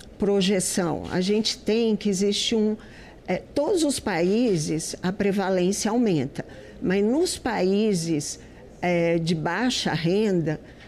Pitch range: 175-225 Hz